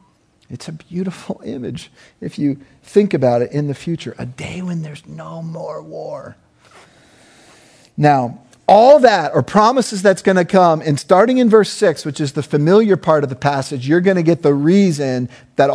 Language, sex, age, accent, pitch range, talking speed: English, male, 40-59, American, 105-145 Hz, 185 wpm